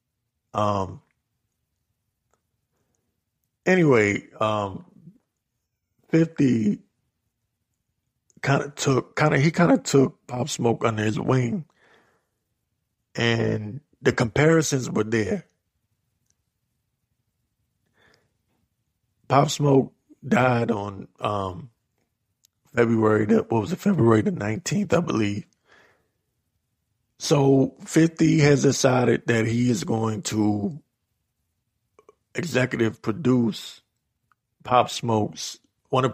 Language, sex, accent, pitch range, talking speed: English, male, American, 110-135 Hz, 85 wpm